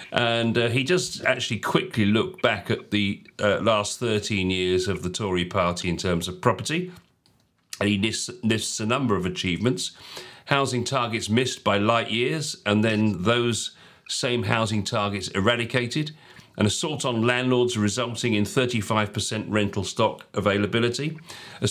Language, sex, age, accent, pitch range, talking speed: English, male, 40-59, British, 100-125 Hz, 150 wpm